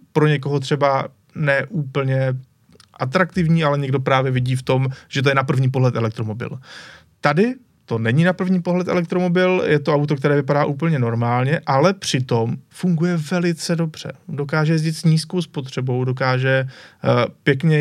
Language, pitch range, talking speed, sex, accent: Czech, 130-150 Hz, 150 wpm, male, native